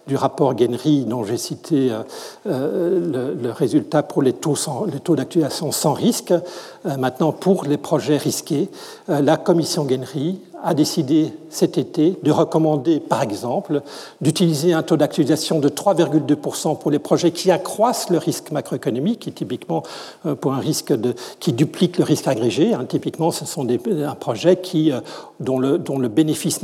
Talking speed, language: 160 wpm, French